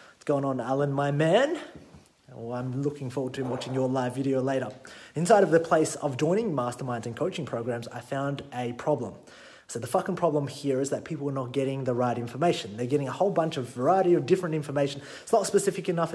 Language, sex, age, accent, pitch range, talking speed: English, male, 30-49, Australian, 130-165 Hz, 215 wpm